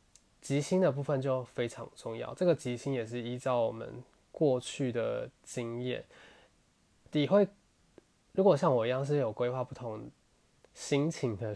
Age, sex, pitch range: 20-39, male, 115-135 Hz